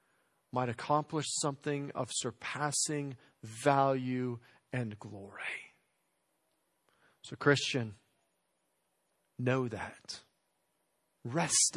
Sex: male